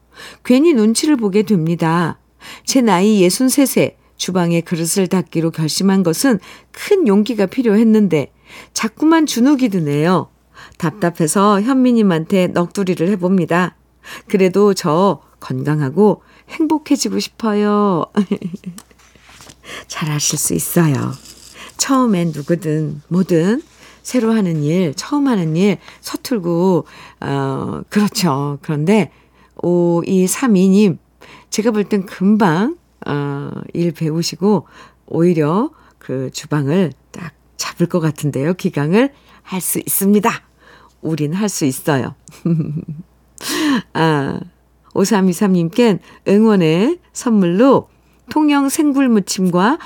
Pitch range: 165-230 Hz